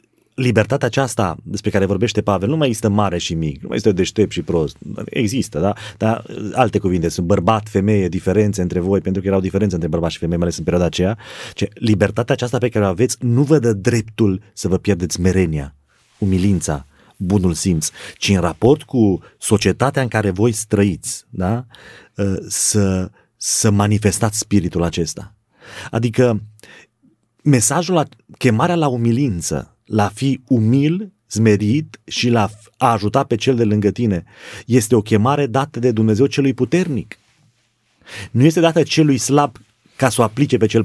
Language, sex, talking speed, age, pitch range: Romanian, male, 165 wpm, 30-49, 100-135 Hz